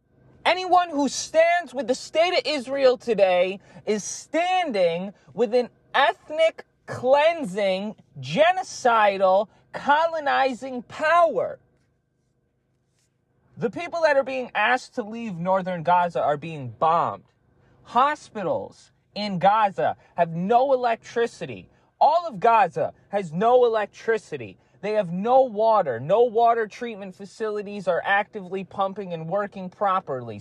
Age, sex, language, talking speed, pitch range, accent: 30-49, male, English, 110 wpm, 170-260 Hz, American